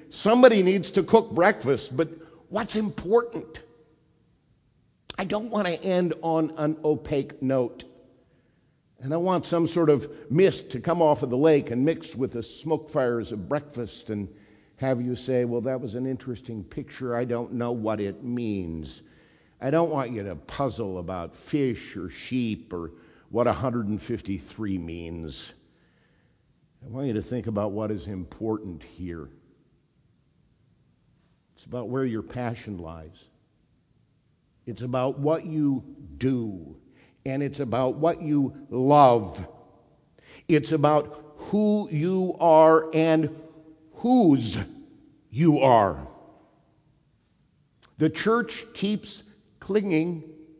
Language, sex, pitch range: English, male, 115-160 Hz